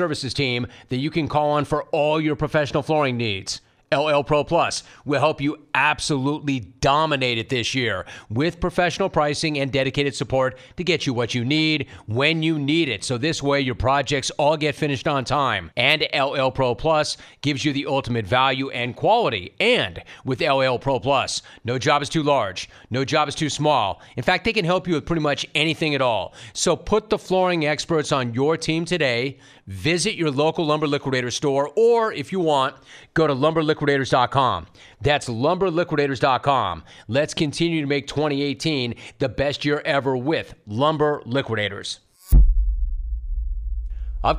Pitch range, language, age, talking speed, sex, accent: 125-155 Hz, English, 40-59, 170 wpm, male, American